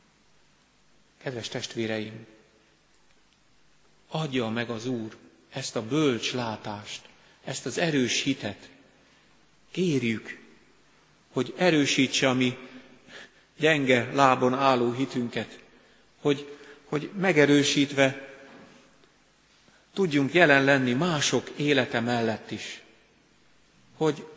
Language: Hungarian